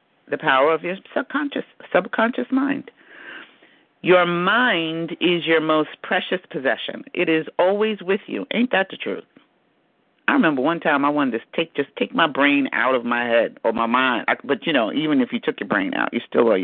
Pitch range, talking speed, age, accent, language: 160-260 Hz, 200 wpm, 50-69, American, English